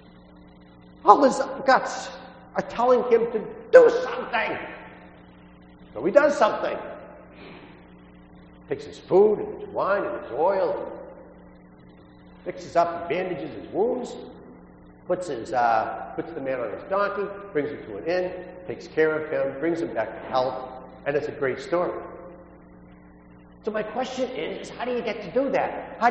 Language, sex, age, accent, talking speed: English, male, 50-69, American, 155 wpm